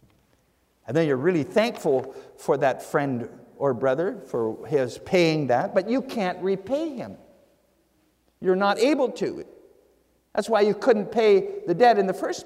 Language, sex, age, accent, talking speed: English, male, 50-69, American, 160 wpm